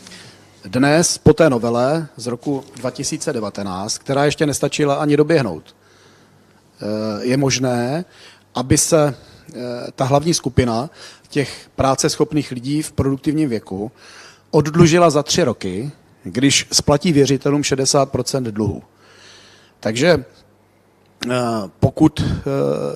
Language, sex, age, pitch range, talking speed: Czech, male, 40-59, 120-150 Hz, 95 wpm